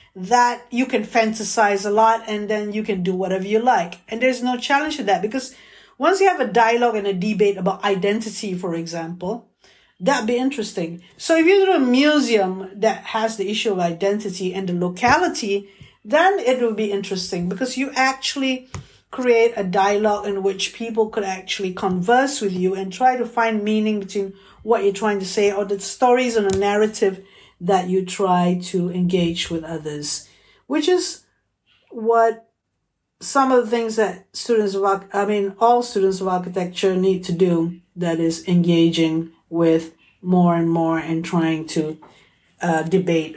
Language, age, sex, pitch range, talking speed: English, 50-69, female, 185-240 Hz, 175 wpm